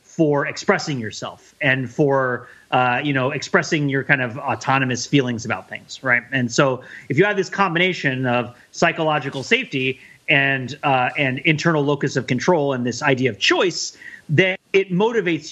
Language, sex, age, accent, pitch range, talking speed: English, male, 30-49, American, 135-170 Hz, 160 wpm